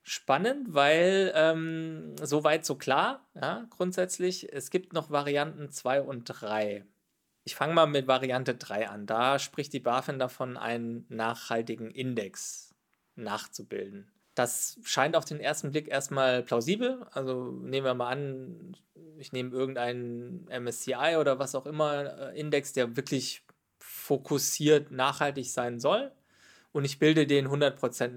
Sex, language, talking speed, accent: male, German, 135 wpm, German